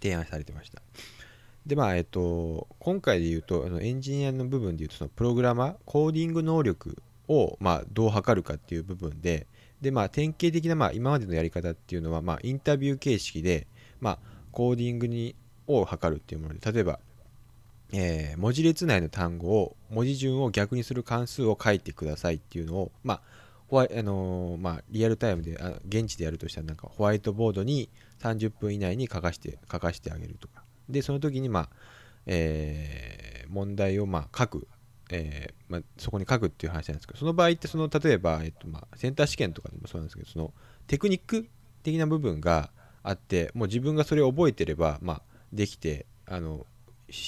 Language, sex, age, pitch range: Japanese, male, 20-39, 85-125 Hz